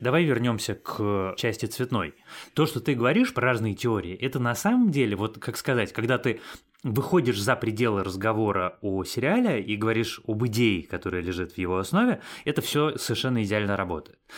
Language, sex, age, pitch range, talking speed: Russian, male, 20-39, 110-130 Hz, 170 wpm